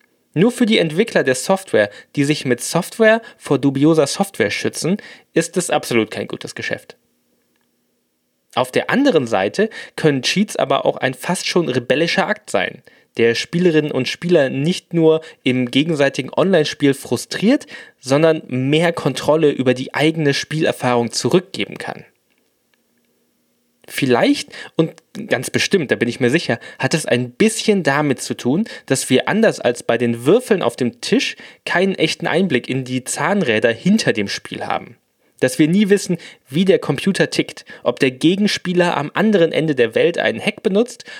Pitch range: 130-180 Hz